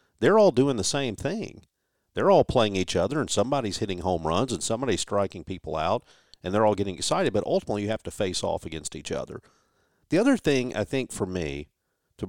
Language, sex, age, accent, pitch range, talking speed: English, male, 50-69, American, 95-125 Hz, 215 wpm